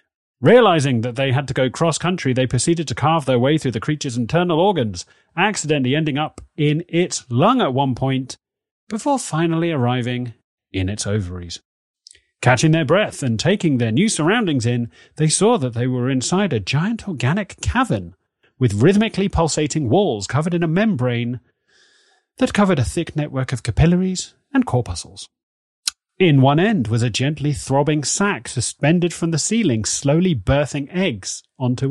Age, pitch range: 30-49, 120-165 Hz